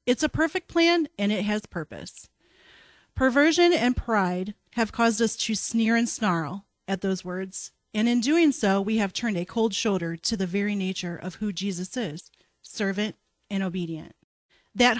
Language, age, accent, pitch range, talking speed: English, 40-59, American, 185-260 Hz, 170 wpm